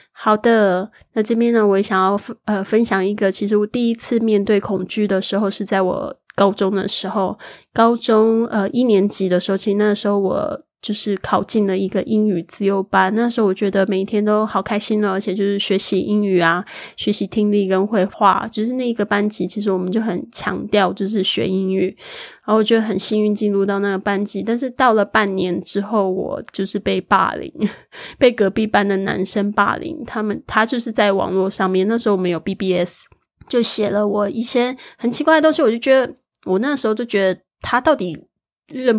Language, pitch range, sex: Chinese, 190-225 Hz, female